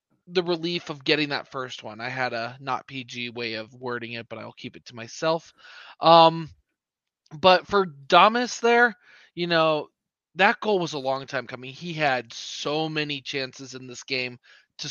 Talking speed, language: 180 wpm, English